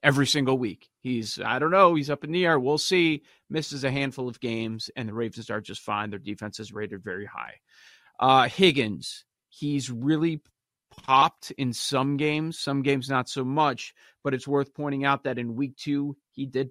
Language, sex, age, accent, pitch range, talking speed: English, male, 40-59, American, 115-150 Hz, 200 wpm